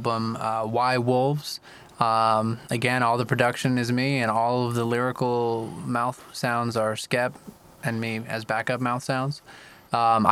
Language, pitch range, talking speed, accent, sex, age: English, 110-130 Hz, 150 wpm, American, male, 20-39